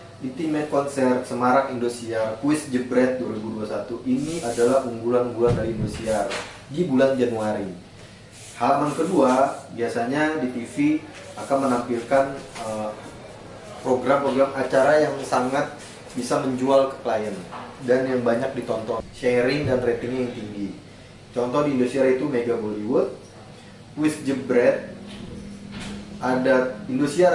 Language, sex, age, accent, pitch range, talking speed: Indonesian, male, 20-39, native, 120-140 Hz, 110 wpm